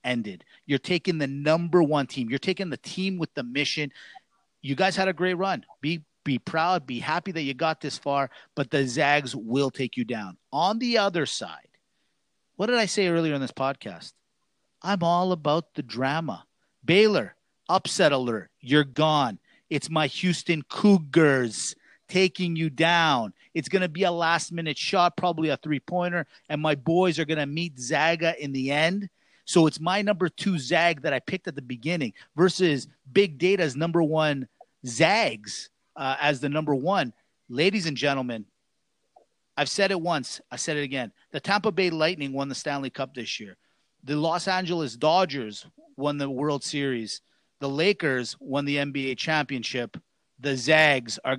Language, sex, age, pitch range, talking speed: English, male, 40-59, 135-175 Hz, 175 wpm